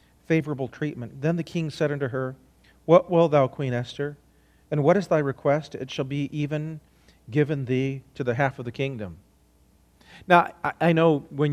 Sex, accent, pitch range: male, American, 120-155 Hz